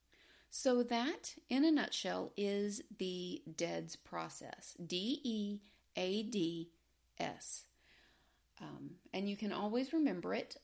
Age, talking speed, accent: 40-59, 95 wpm, American